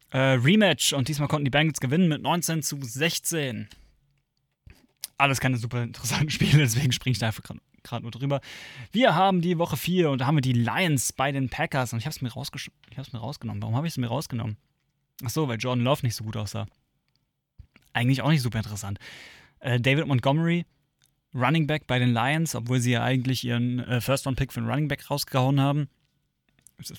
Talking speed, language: 200 wpm, German